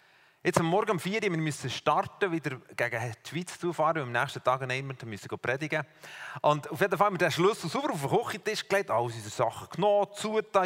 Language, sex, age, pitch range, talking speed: English, male, 40-59, 150-200 Hz, 225 wpm